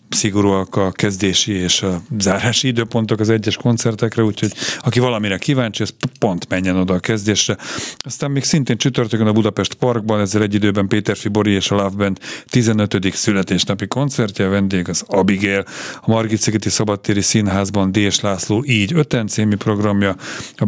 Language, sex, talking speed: Hungarian, male, 155 wpm